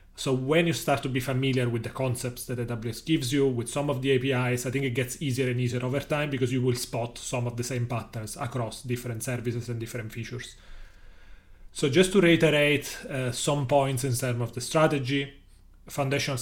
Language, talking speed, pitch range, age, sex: English, 205 wpm, 120-135 Hz, 30-49, male